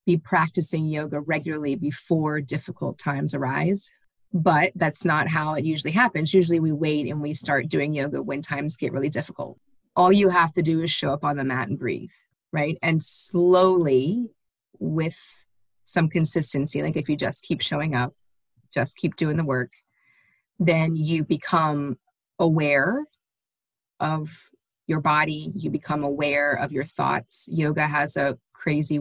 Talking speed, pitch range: 155 wpm, 145-170 Hz